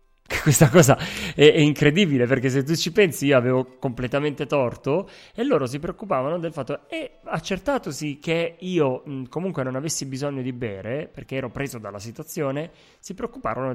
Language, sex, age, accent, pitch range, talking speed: Italian, male, 30-49, native, 115-150 Hz, 155 wpm